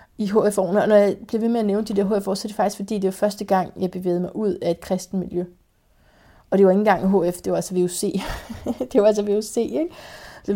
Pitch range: 190-225 Hz